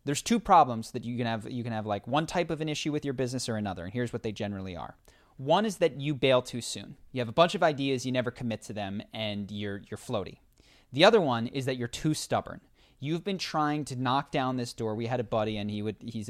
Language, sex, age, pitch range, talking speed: English, male, 30-49, 115-145 Hz, 270 wpm